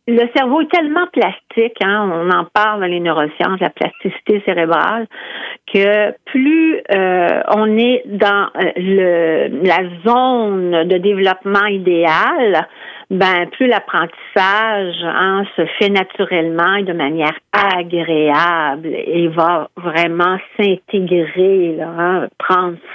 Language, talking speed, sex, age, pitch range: French, 120 wpm, female, 50-69, 170-210 Hz